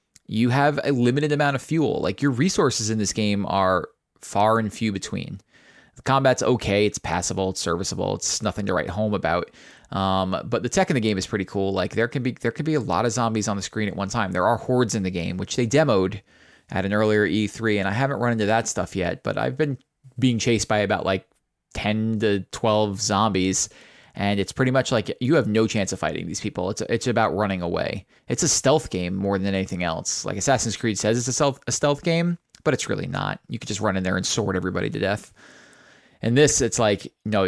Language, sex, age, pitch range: English, male, 20-39, 95-120 Hz